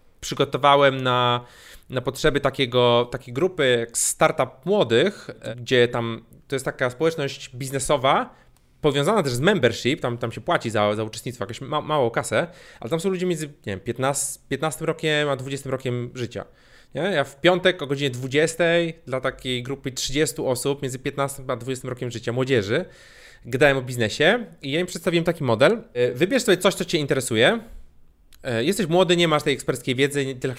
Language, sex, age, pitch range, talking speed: Polish, male, 30-49, 125-170 Hz, 175 wpm